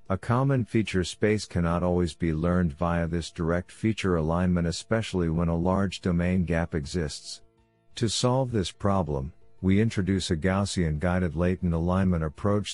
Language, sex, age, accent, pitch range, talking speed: English, male, 50-69, American, 85-100 Hz, 145 wpm